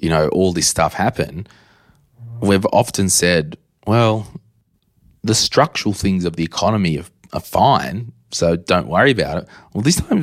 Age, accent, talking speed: 20-39, Australian, 160 wpm